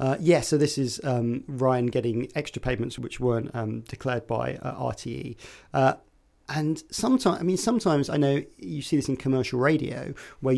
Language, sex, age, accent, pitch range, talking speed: English, male, 40-59, British, 120-145 Hz, 180 wpm